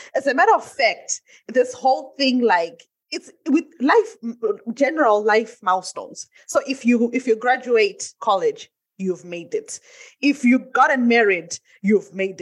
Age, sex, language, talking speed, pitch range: 20-39, female, English, 150 wpm, 205-295 Hz